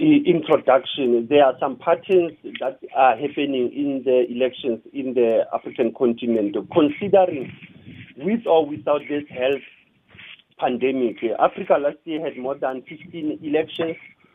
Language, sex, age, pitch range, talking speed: English, male, 50-69, 140-190 Hz, 125 wpm